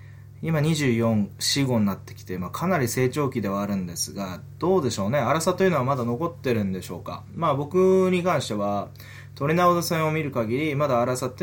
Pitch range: 105-140 Hz